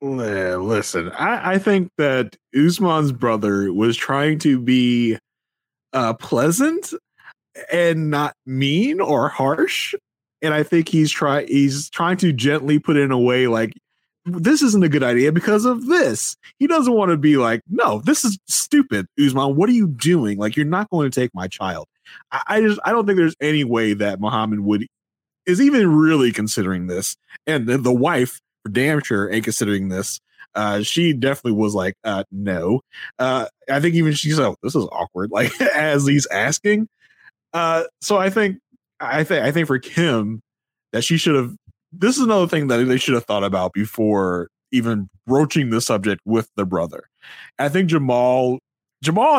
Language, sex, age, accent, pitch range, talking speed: English, male, 20-39, American, 115-170 Hz, 175 wpm